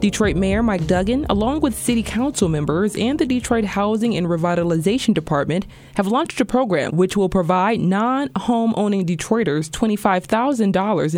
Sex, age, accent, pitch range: female, 20-39, American, 170-230 Hz